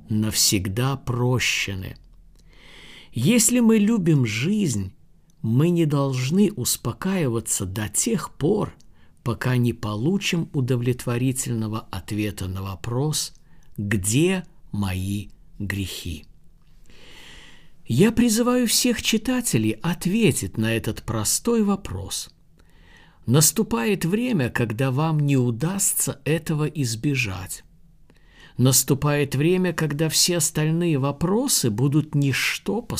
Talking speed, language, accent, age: 90 wpm, Russian, native, 50-69